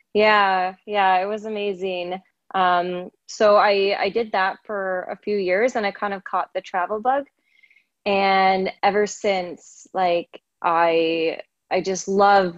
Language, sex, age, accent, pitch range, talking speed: English, female, 20-39, American, 185-210 Hz, 150 wpm